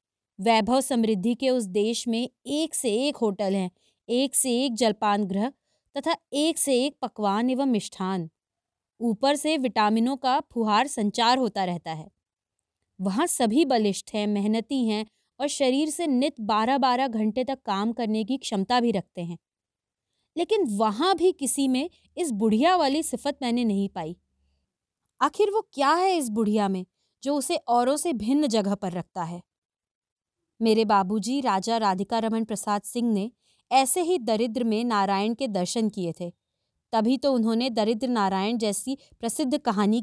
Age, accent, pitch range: 20-39, native, 205-270 Hz